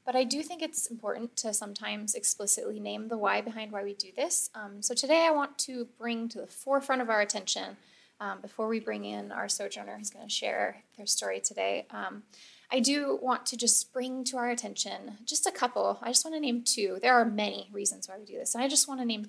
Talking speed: 240 wpm